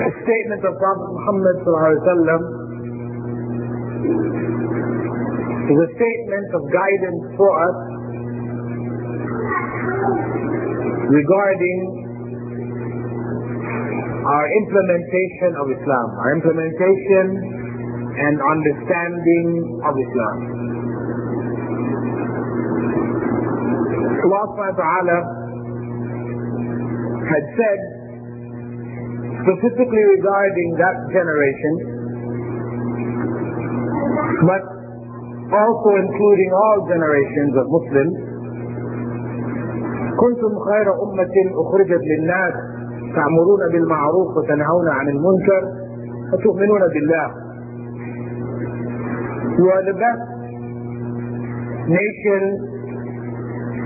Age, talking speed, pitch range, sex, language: 50-69, 60 wpm, 120-185 Hz, male, English